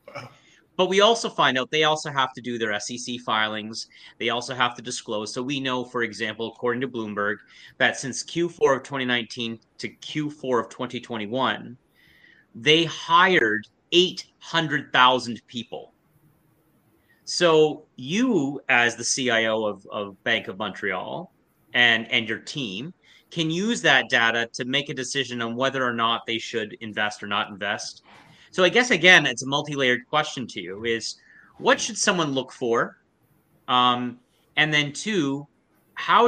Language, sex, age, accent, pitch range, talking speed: English, male, 30-49, American, 115-155 Hz, 150 wpm